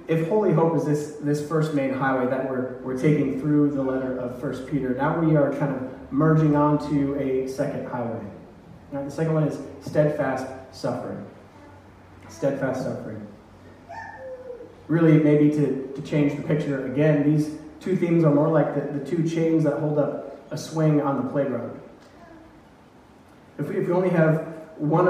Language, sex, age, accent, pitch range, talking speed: English, male, 30-49, American, 135-155 Hz, 165 wpm